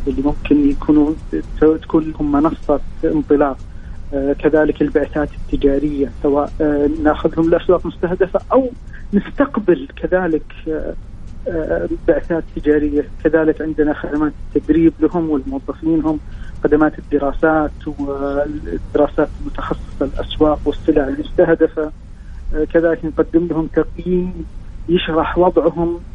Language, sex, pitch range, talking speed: English, male, 150-185 Hz, 90 wpm